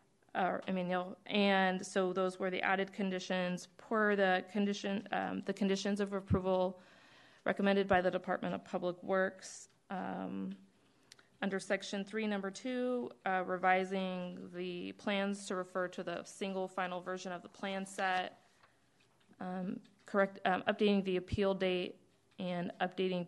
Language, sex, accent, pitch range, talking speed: English, female, American, 180-200 Hz, 145 wpm